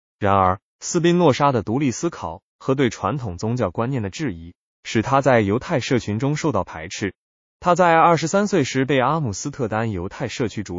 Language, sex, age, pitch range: Chinese, male, 20-39, 100-140 Hz